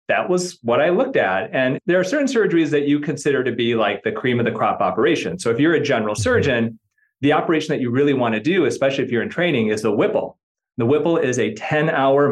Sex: male